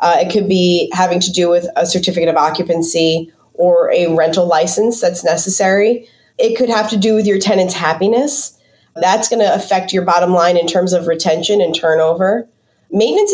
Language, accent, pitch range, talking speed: English, American, 175-220 Hz, 185 wpm